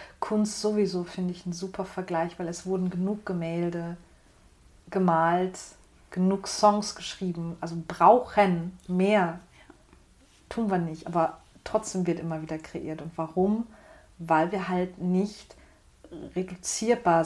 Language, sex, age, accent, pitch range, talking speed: German, female, 40-59, German, 170-205 Hz, 120 wpm